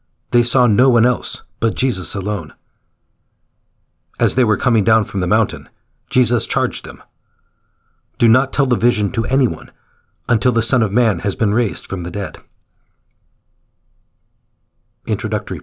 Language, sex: English, male